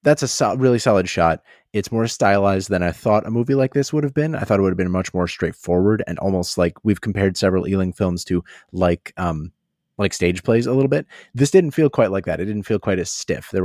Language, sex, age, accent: English, male, 30-49, American